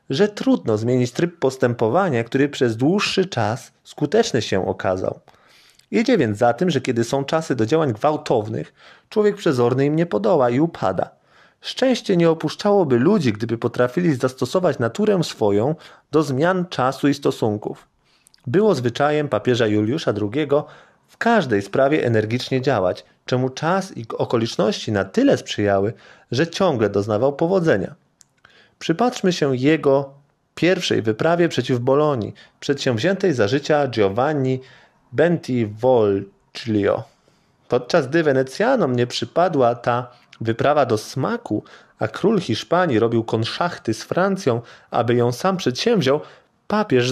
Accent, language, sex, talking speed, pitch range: native, Polish, male, 125 wpm, 115-165 Hz